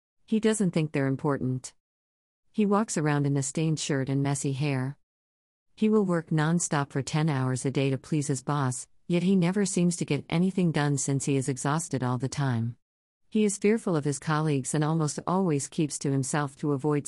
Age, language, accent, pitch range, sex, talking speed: 50-69, English, American, 130-165 Hz, female, 200 wpm